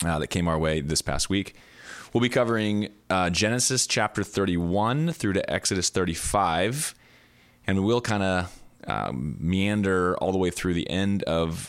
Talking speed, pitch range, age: 160 wpm, 80-95 Hz, 20-39